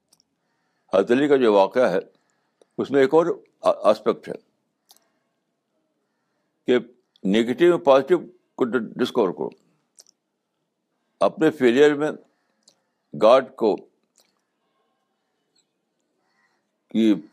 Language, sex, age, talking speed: Urdu, male, 60-79, 80 wpm